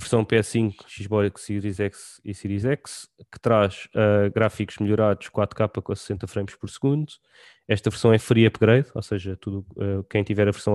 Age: 20-39